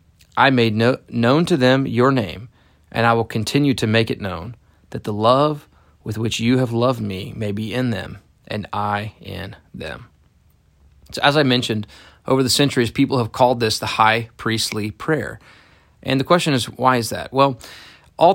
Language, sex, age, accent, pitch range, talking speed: English, male, 30-49, American, 115-135 Hz, 185 wpm